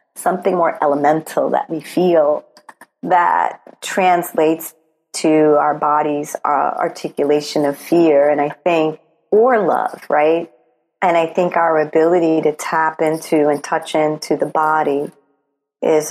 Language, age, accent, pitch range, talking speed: English, 40-59, American, 145-165 Hz, 130 wpm